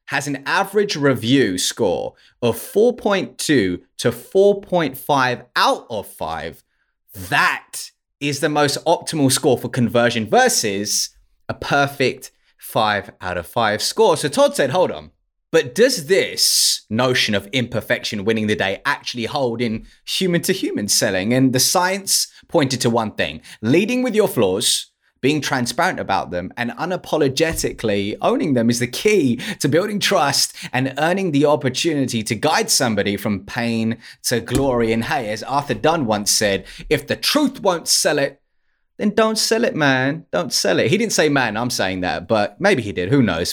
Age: 20-39